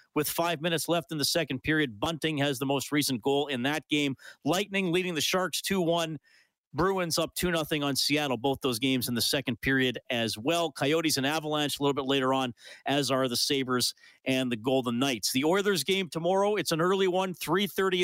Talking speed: 205 wpm